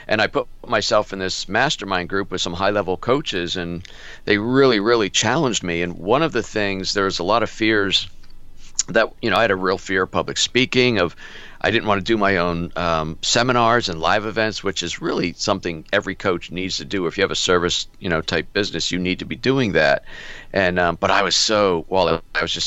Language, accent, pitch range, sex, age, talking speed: English, American, 90-110 Hz, male, 50-69, 230 wpm